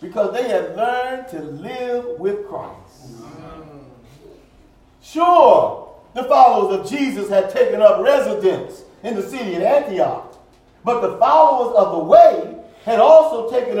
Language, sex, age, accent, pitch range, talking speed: English, male, 50-69, American, 245-335 Hz, 135 wpm